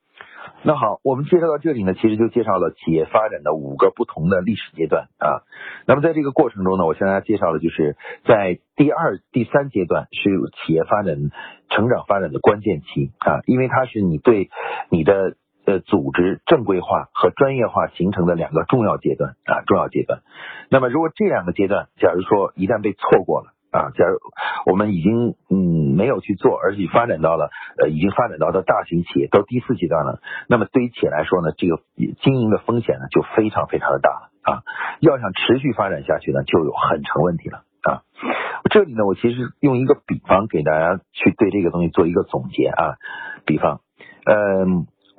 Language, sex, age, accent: Chinese, male, 50-69, native